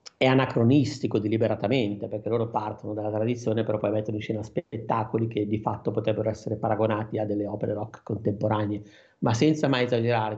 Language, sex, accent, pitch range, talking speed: Italian, male, native, 105-125 Hz, 170 wpm